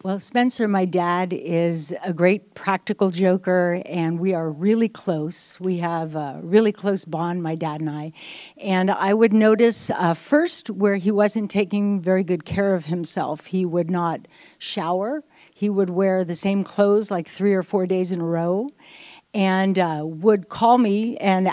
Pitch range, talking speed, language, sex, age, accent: 180-215 Hz, 175 wpm, English, female, 50-69, American